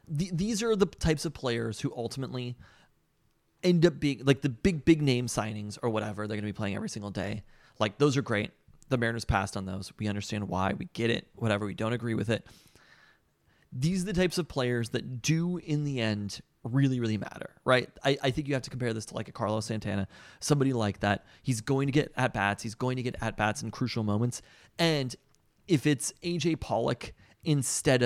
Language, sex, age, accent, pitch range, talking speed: English, male, 30-49, American, 110-145 Hz, 215 wpm